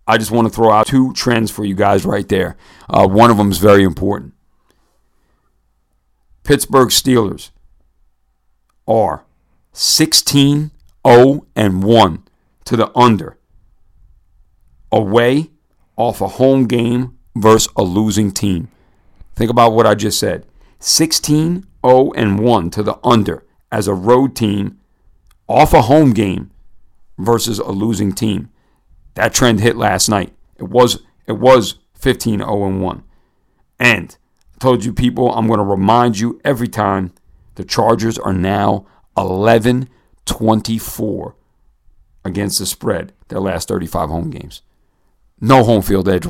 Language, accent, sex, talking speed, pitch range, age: English, American, male, 125 wpm, 100-120 Hz, 50-69